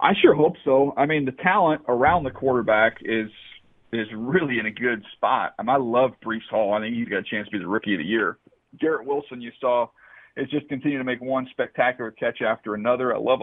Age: 40-59